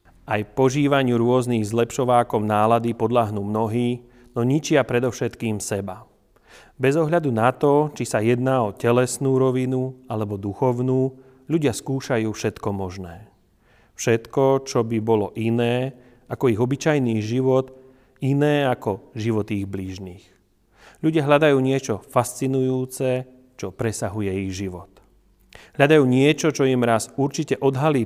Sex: male